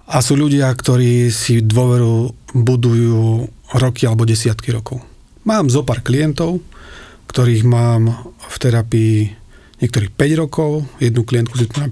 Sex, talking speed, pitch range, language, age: male, 125 wpm, 115-130 Hz, Slovak, 40-59